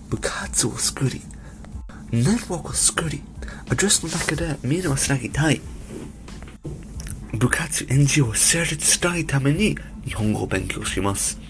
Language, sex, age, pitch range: Japanese, male, 30-49, 110-175 Hz